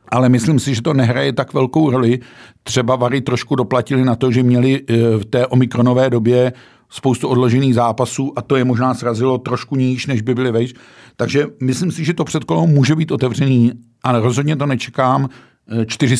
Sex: male